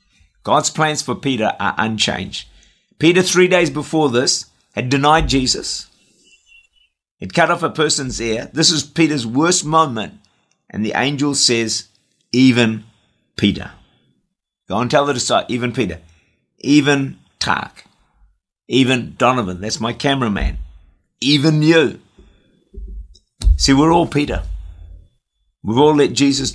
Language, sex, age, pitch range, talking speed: English, male, 50-69, 90-140 Hz, 125 wpm